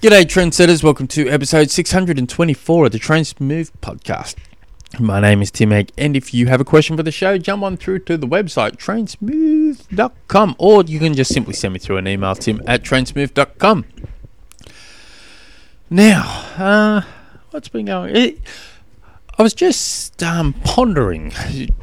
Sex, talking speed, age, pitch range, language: male, 150 wpm, 20-39, 105-160 Hz, English